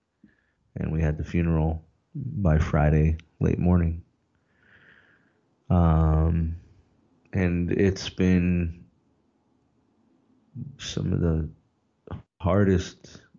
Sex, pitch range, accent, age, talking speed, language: male, 80-105 Hz, American, 30-49, 75 wpm, English